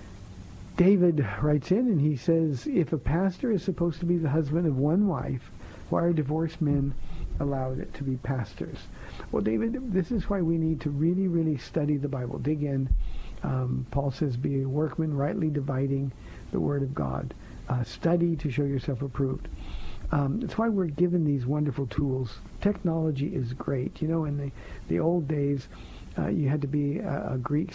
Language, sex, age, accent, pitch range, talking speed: English, male, 50-69, American, 130-165 Hz, 185 wpm